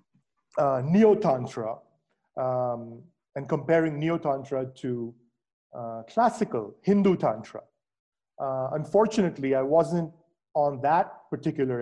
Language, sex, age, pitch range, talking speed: English, male, 50-69, 130-170 Hz, 85 wpm